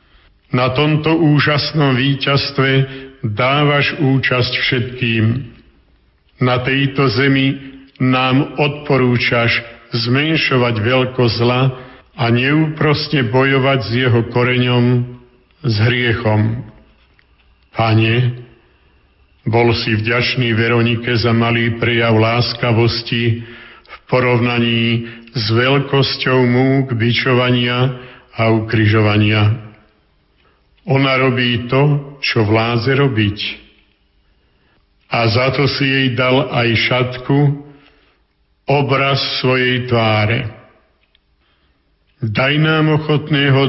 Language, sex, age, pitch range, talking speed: Slovak, male, 50-69, 115-135 Hz, 80 wpm